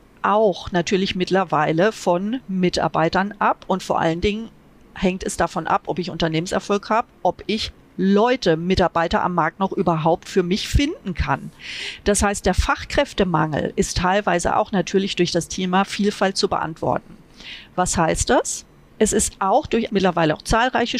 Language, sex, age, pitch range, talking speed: German, female, 40-59, 175-215 Hz, 155 wpm